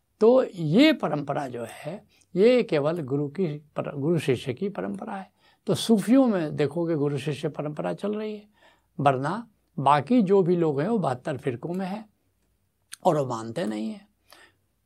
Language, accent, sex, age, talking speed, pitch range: Hindi, native, male, 70-89, 165 wpm, 145-215 Hz